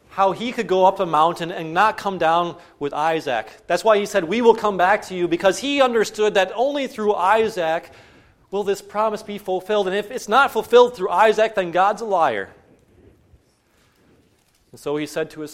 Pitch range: 135-195 Hz